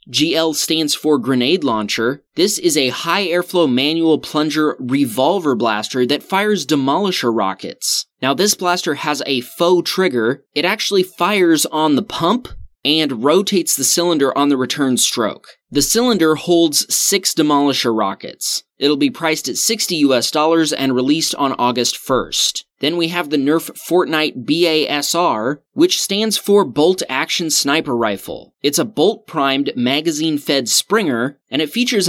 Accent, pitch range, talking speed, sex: American, 135-180 Hz, 145 wpm, male